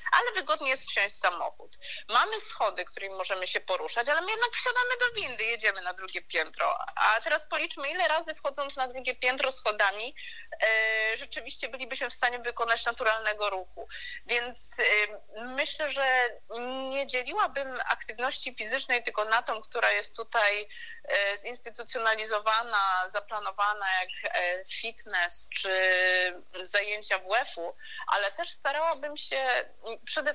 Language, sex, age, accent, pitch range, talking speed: Polish, female, 30-49, native, 215-295 Hz, 125 wpm